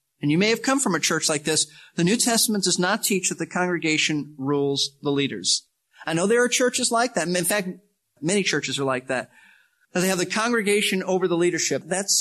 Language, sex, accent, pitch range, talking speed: English, male, American, 155-220 Hz, 215 wpm